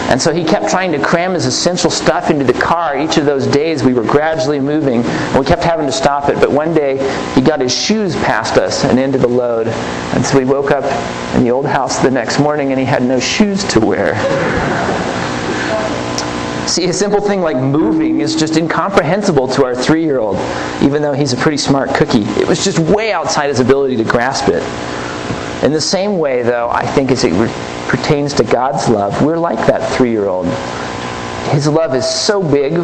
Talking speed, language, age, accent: 205 wpm, English, 40-59, American